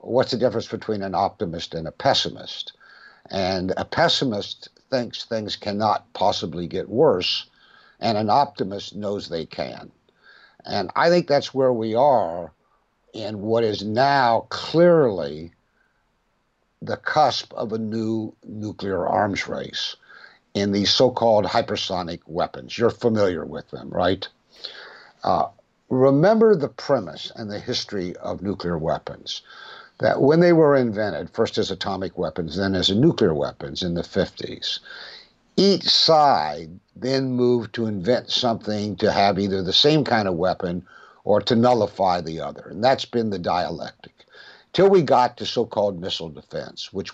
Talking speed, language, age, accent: 145 wpm, English, 60-79, American